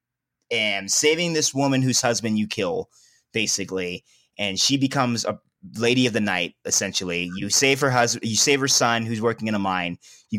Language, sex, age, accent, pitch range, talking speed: English, male, 30-49, American, 100-130 Hz, 185 wpm